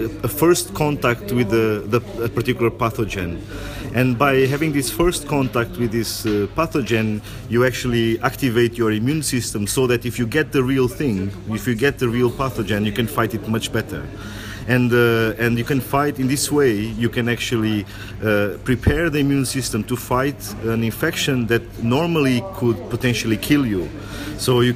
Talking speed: 180 wpm